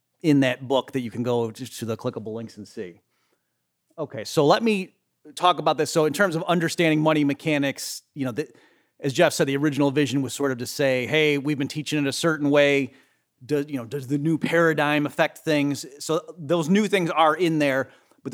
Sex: male